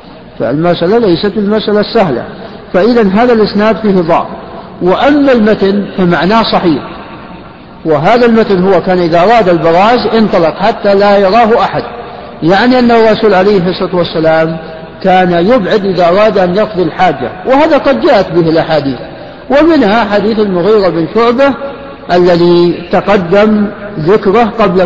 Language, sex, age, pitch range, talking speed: Arabic, male, 50-69, 175-220 Hz, 130 wpm